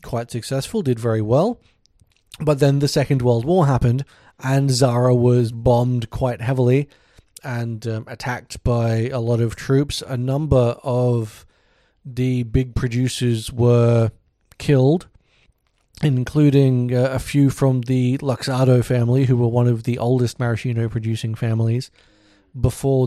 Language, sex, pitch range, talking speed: English, male, 115-135 Hz, 135 wpm